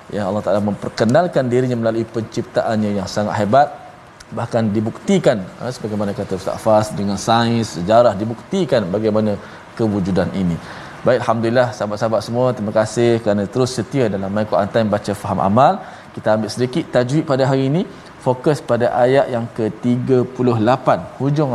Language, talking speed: Malayalam, 145 wpm